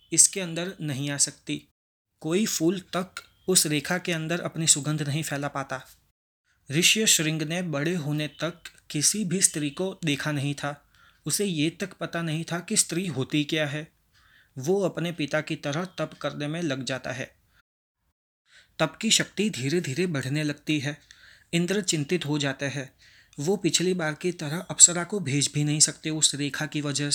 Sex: male